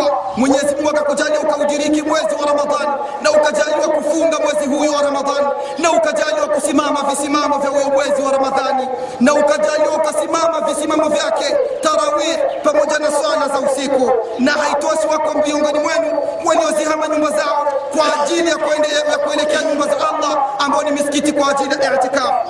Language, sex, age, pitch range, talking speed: Swahili, male, 40-59, 285-310 Hz, 150 wpm